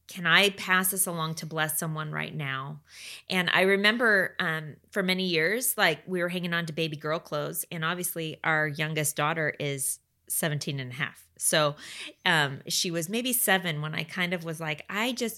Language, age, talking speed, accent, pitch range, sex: English, 20-39, 195 wpm, American, 160-205 Hz, female